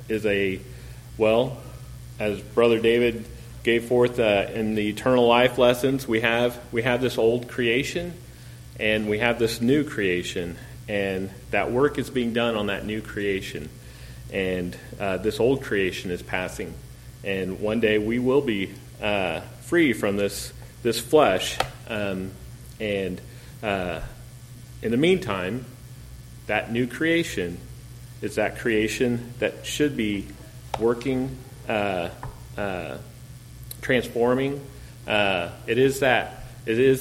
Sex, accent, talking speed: male, American, 130 wpm